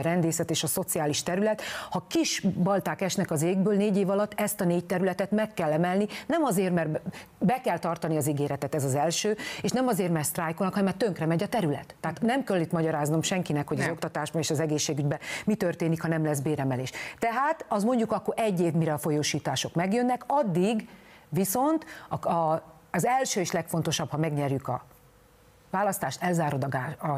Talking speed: 195 wpm